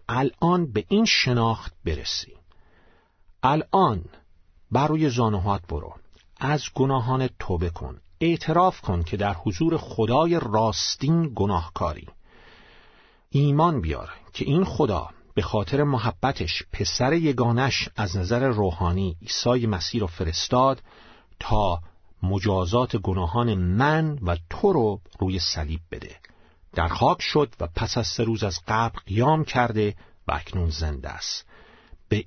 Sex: male